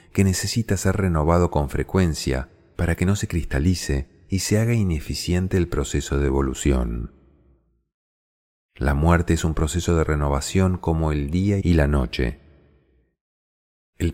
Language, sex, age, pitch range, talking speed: Spanish, male, 40-59, 70-90 Hz, 140 wpm